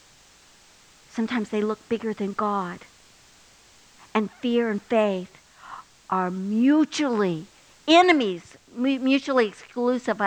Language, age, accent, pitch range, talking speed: English, 60-79, American, 195-250 Hz, 90 wpm